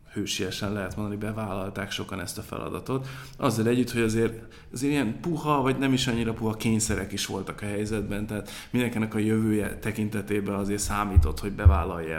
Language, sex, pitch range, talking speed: Hungarian, male, 100-115 Hz, 165 wpm